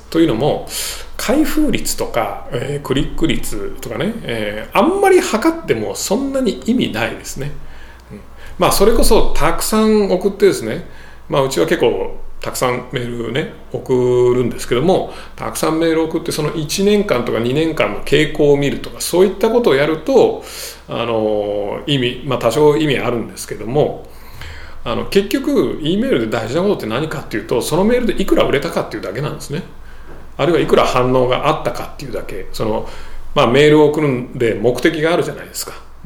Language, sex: Japanese, male